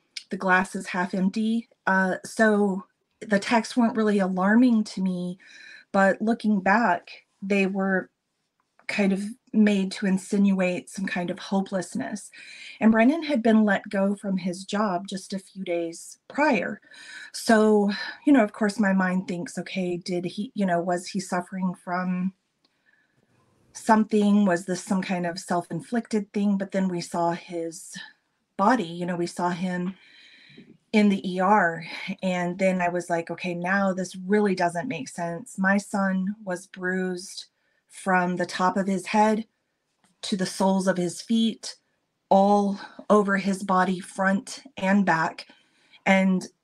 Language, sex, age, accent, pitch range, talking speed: English, female, 30-49, American, 180-215 Hz, 150 wpm